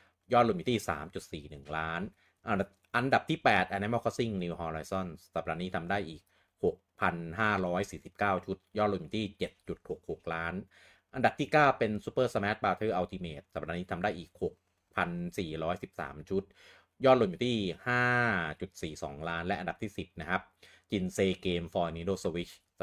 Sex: male